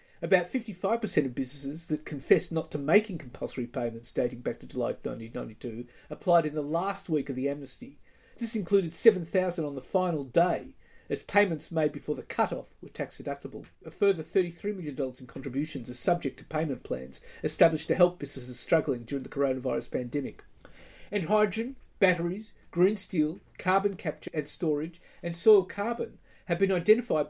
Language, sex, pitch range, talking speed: English, male, 140-180 Hz, 165 wpm